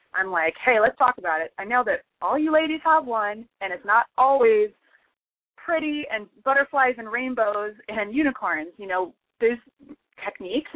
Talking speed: 165 wpm